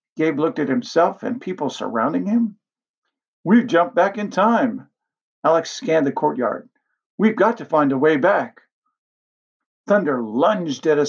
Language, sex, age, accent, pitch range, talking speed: English, male, 50-69, American, 150-240 Hz, 150 wpm